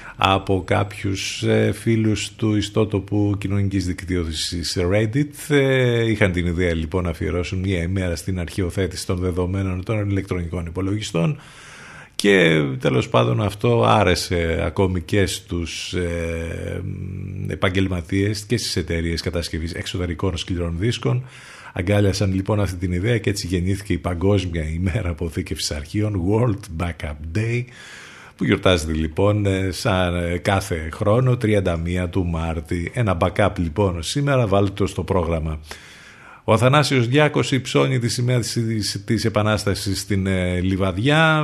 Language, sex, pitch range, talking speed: Greek, male, 90-105 Hz, 120 wpm